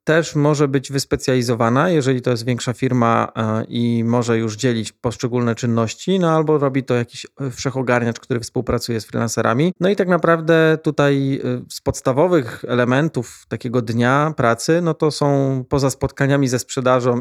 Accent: native